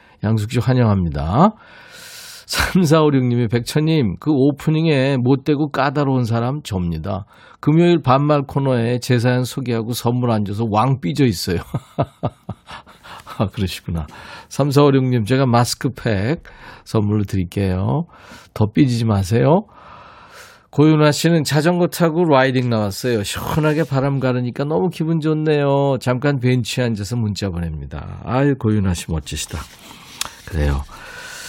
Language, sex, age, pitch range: Korean, male, 40-59, 105-150 Hz